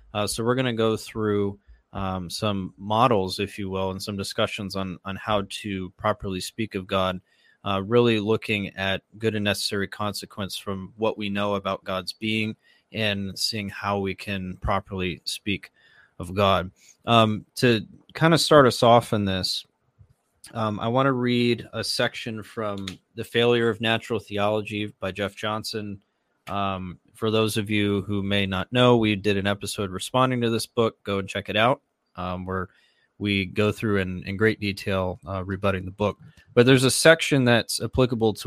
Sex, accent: male, American